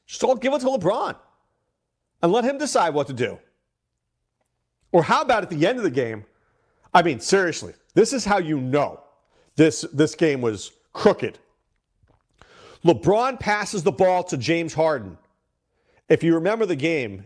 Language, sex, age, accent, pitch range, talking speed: English, male, 40-59, American, 120-190 Hz, 165 wpm